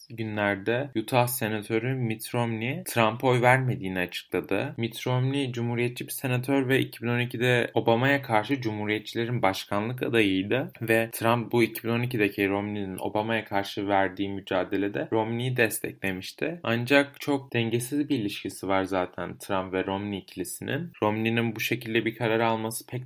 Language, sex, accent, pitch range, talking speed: Turkish, male, native, 105-120 Hz, 130 wpm